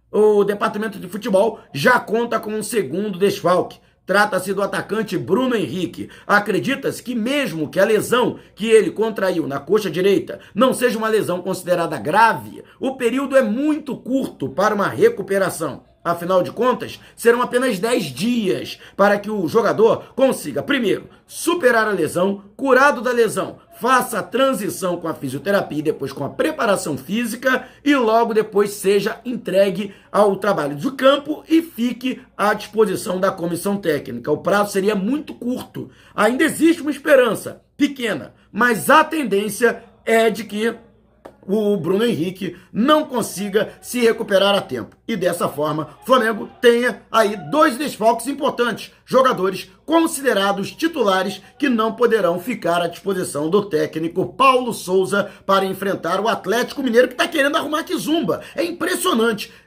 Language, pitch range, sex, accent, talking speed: Portuguese, 190-250 Hz, male, Brazilian, 150 wpm